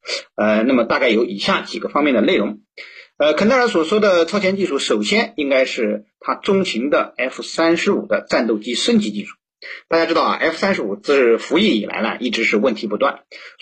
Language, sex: Chinese, male